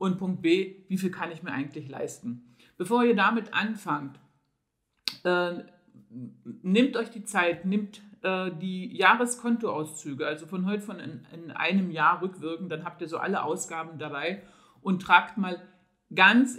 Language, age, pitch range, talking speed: German, 50-69, 165-205 Hz, 155 wpm